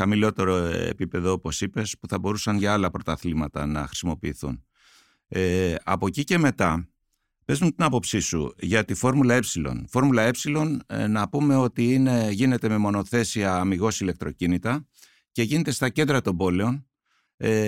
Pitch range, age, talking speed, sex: 95-130 Hz, 60-79, 150 wpm, male